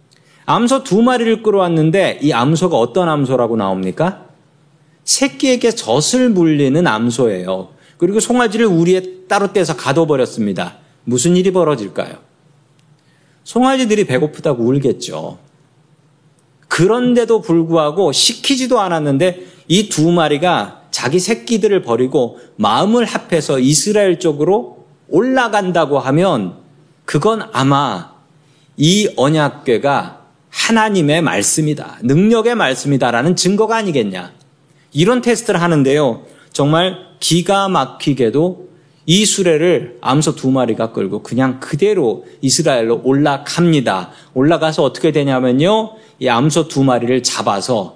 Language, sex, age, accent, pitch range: Korean, male, 40-59, native, 140-190 Hz